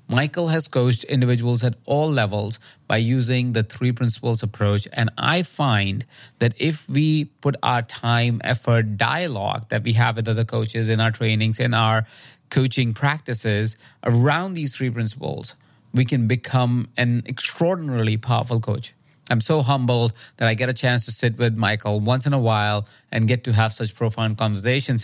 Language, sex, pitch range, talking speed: English, male, 115-135 Hz, 170 wpm